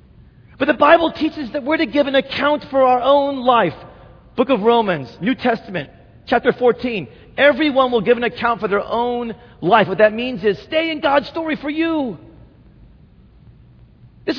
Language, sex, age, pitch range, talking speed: English, male, 40-59, 150-230 Hz, 170 wpm